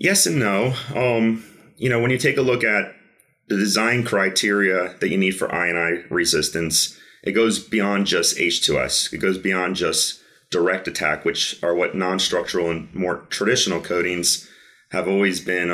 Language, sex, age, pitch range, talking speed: English, male, 30-49, 85-105 Hz, 170 wpm